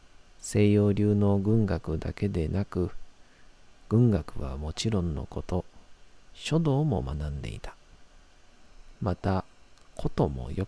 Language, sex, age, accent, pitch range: Japanese, male, 40-59, native, 85-115 Hz